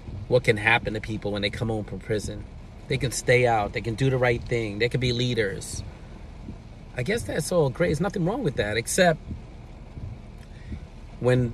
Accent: American